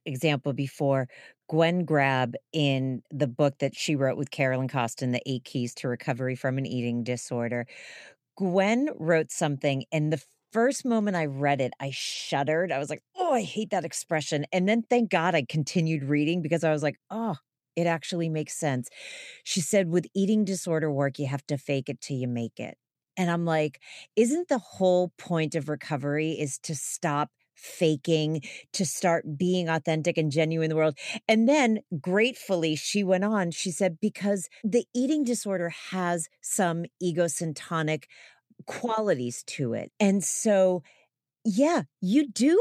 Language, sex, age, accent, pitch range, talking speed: English, female, 40-59, American, 145-195 Hz, 165 wpm